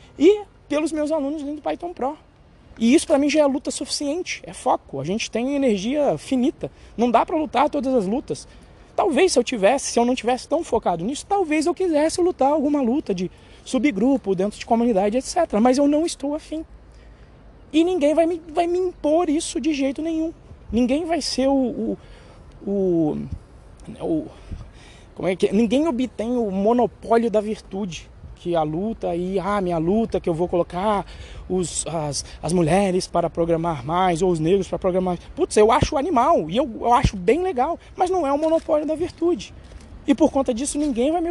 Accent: Brazilian